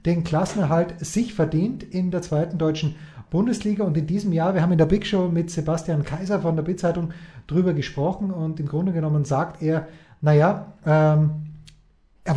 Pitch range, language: 155-190 Hz, German